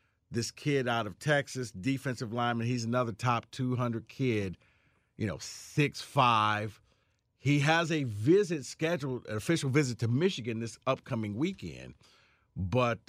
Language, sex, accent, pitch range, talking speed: English, male, American, 105-130 Hz, 140 wpm